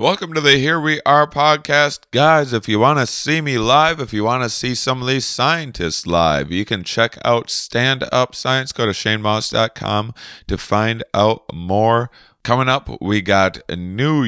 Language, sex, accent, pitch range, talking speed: English, male, American, 85-120 Hz, 185 wpm